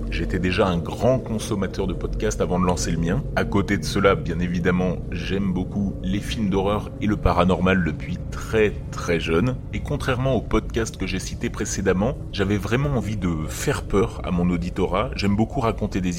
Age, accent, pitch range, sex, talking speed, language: 30-49, French, 90-115 Hz, male, 190 wpm, French